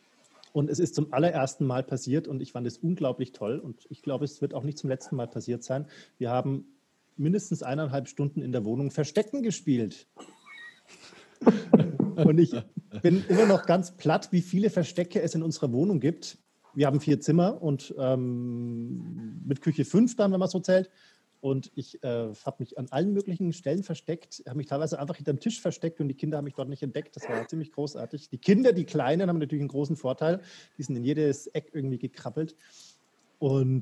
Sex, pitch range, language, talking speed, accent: male, 130-175 Hz, German, 195 wpm, German